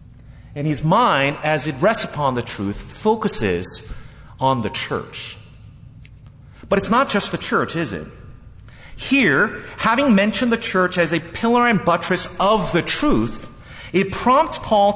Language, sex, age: English, male, 40-59